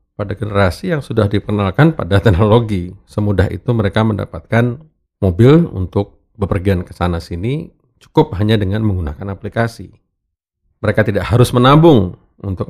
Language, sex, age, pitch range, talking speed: Indonesian, male, 40-59, 85-115 Hz, 130 wpm